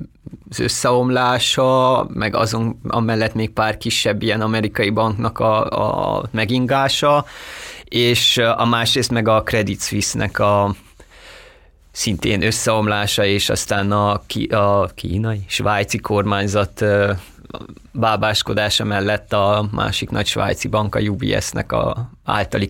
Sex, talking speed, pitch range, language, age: male, 115 wpm, 100-115 Hz, Hungarian, 20-39